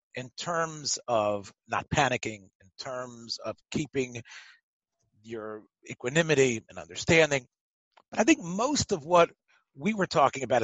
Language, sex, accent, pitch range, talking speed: English, male, American, 120-180 Hz, 125 wpm